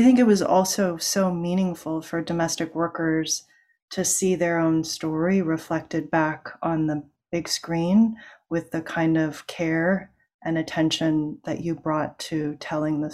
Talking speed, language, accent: 155 wpm, English, American